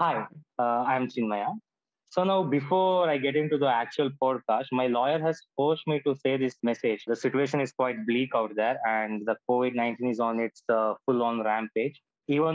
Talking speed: 185 wpm